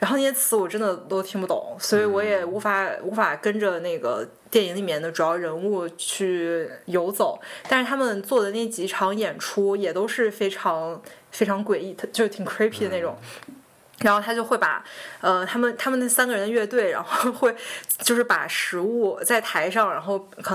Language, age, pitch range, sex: Chinese, 20-39, 185-220 Hz, female